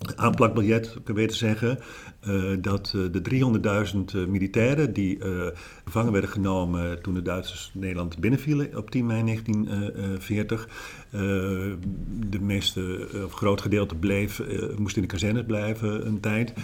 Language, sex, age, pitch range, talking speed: Dutch, male, 50-69, 100-115 Hz, 140 wpm